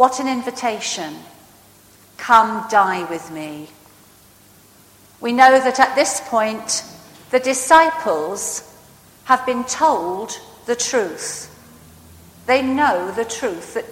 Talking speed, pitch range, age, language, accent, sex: 110 wpm, 210-265 Hz, 50-69, English, British, female